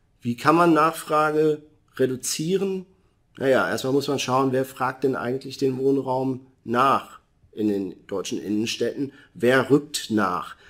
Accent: German